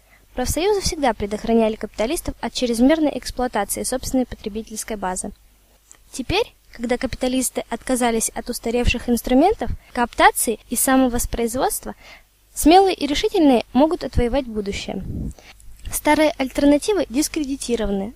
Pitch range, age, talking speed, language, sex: 235-310 Hz, 20-39, 95 wpm, Russian, female